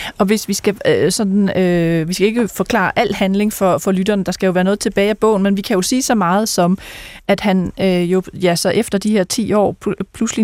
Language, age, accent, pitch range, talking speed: Danish, 30-49, native, 175-200 Hz, 255 wpm